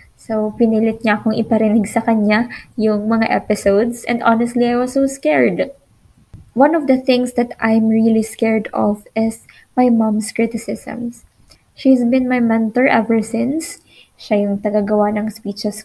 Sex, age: female, 20-39